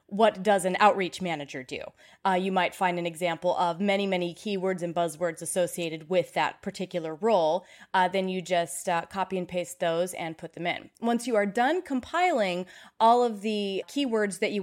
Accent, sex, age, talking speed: American, female, 20-39, 195 wpm